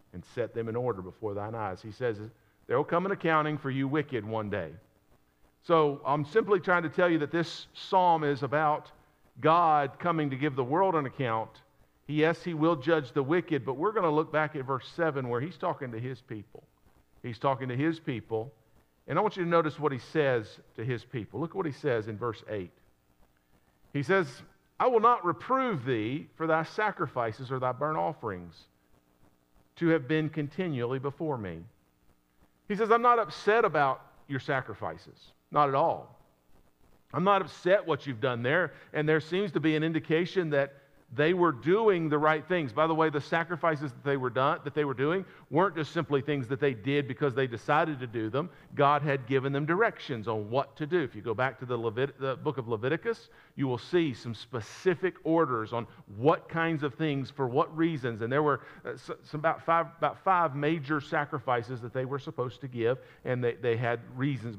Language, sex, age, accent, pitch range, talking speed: English, male, 50-69, American, 120-160 Hz, 200 wpm